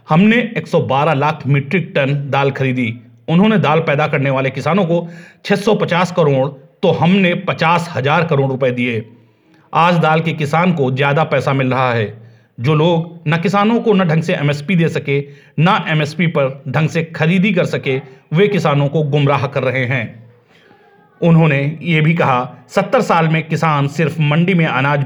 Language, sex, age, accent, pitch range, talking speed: Hindi, male, 40-59, native, 135-170 Hz, 170 wpm